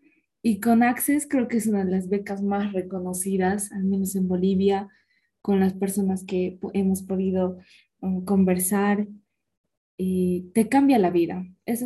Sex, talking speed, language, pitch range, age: female, 145 wpm, Spanish, 190-220 Hz, 20-39